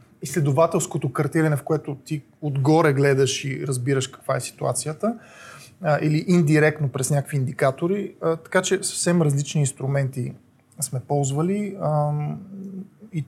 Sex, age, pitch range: male, 30-49, 140-165 Hz